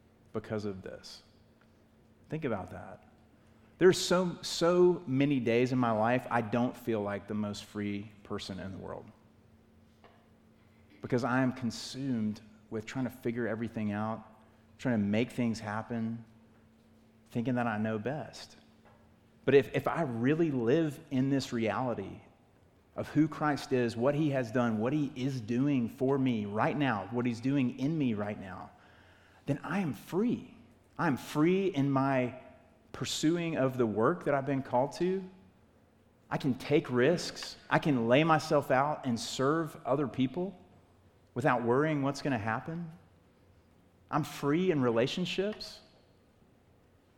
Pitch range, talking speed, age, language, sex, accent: 110-140 Hz, 150 wpm, 30-49, English, male, American